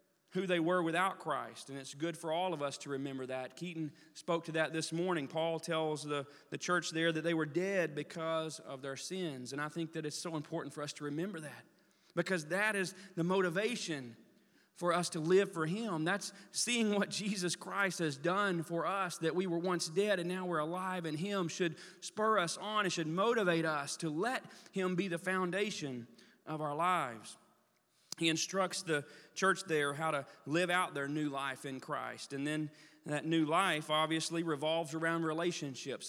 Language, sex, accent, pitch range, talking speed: English, male, American, 150-180 Hz, 195 wpm